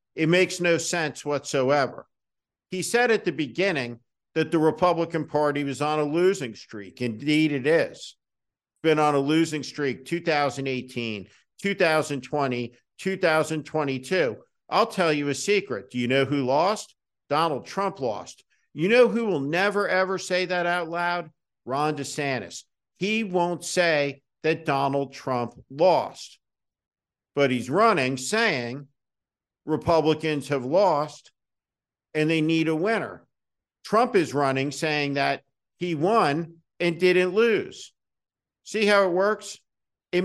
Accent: American